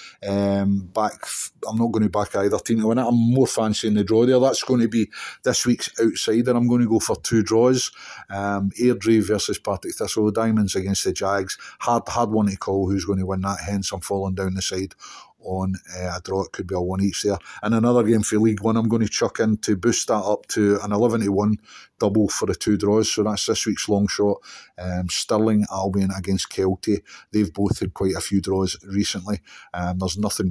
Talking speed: 230 wpm